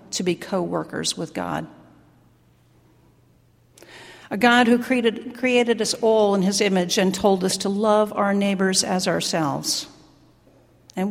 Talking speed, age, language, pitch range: 135 wpm, 50-69, English, 180-230 Hz